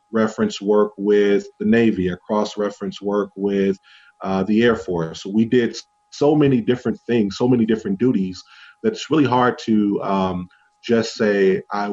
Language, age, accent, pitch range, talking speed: English, 30-49, American, 100-120 Hz, 160 wpm